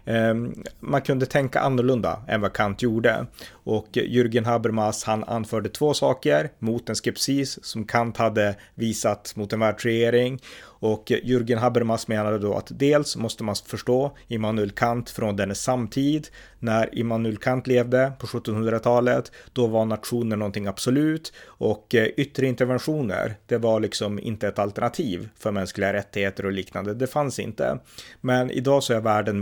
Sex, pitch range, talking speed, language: male, 105-125 Hz, 150 wpm, Swedish